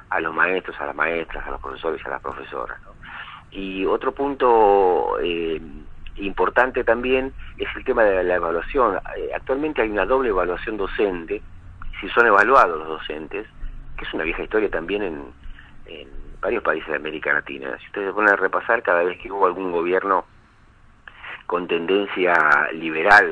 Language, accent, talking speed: Spanish, Argentinian, 160 wpm